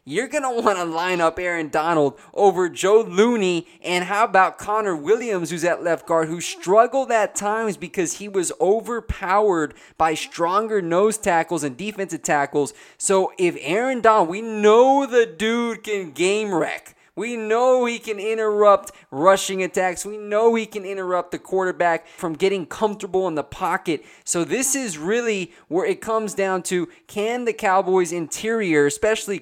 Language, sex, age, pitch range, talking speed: English, male, 20-39, 165-210 Hz, 165 wpm